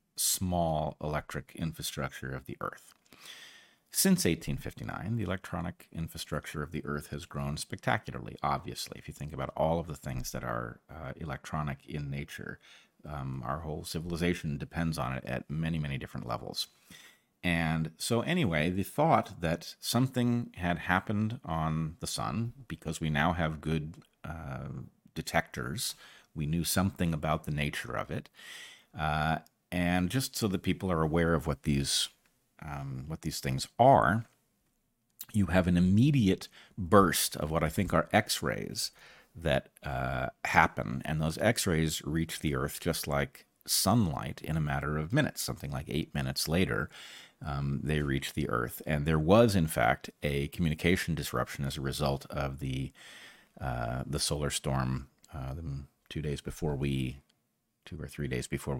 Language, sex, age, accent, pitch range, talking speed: English, male, 40-59, American, 70-85 Hz, 155 wpm